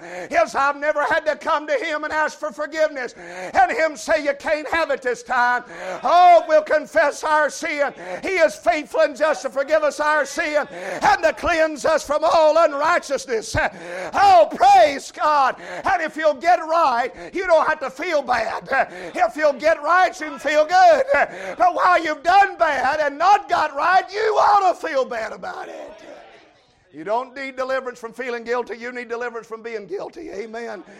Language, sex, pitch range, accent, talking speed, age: English, male, 260-330 Hz, American, 185 wpm, 50-69